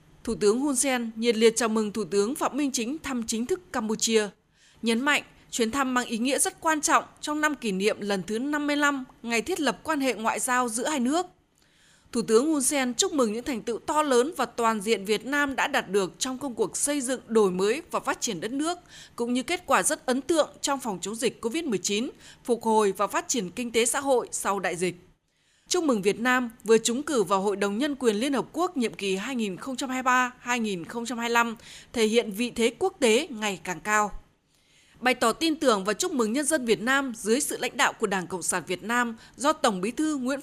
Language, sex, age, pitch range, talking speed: Vietnamese, female, 20-39, 215-280 Hz, 225 wpm